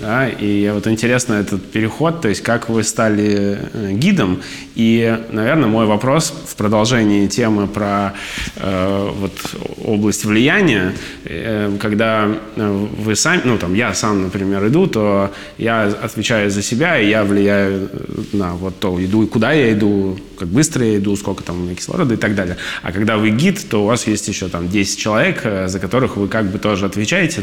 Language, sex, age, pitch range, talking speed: Russian, male, 20-39, 95-110 Hz, 175 wpm